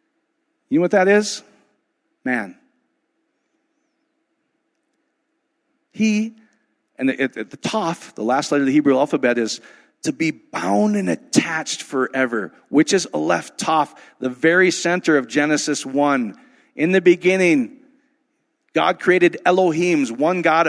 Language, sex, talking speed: English, male, 130 wpm